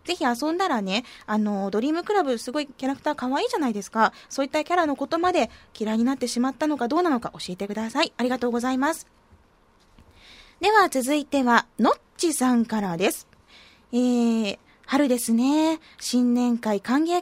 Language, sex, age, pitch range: Japanese, female, 20-39, 230-300 Hz